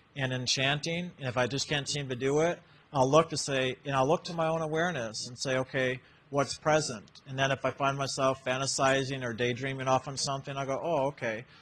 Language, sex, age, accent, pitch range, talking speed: English, male, 40-59, American, 125-145 Hz, 220 wpm